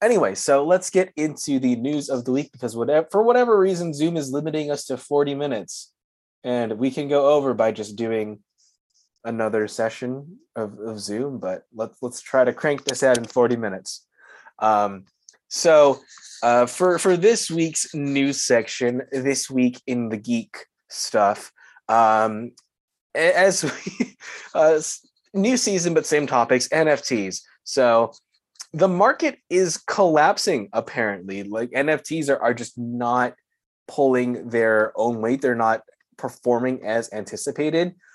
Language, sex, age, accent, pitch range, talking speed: English, male, 20-39, American, 115-150 Hz, 145 wpm